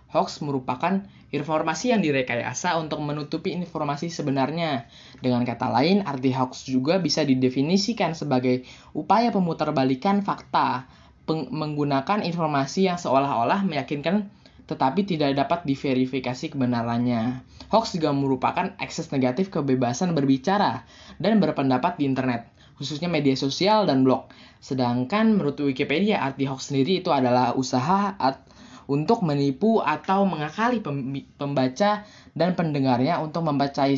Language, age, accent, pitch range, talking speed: Indonesian, 10-29, native, 135-175 Hz, 120 wpm